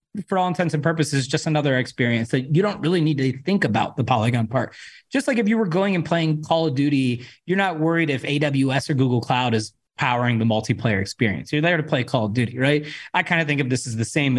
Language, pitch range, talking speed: English, 125-155 Hz, 250 wpm